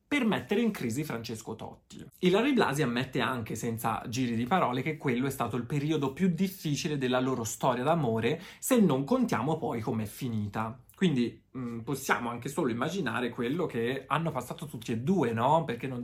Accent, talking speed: native, 185 wpm